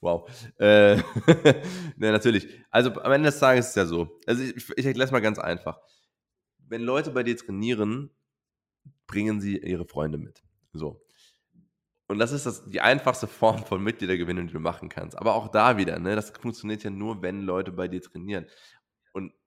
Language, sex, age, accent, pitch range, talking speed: German, male, 20-39, German, 95-135 Hz, 185 wpm